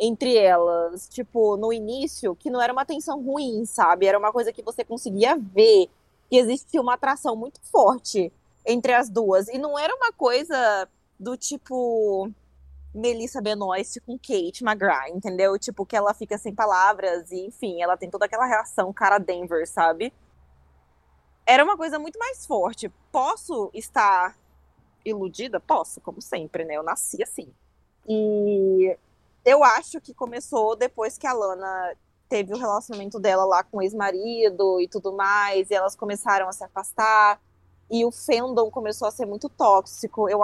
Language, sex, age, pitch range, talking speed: Portuguese, female, 20-39, 195-255 Hz, 160 wpm